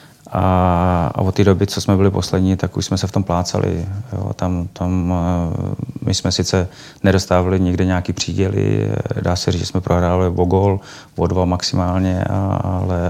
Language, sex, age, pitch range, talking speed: Czech, male, 30-49, 90-100 Hz, 165 wpm